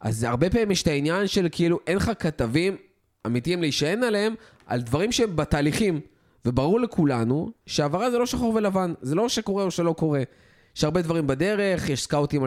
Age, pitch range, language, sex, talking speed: 20-39, 125-170 Hz, Hebrew, male, 175 wpm